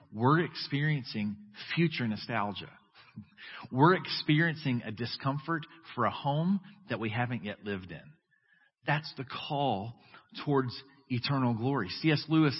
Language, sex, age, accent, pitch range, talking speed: English, male, 40-59, American, 120-155 Hz, 120 wpm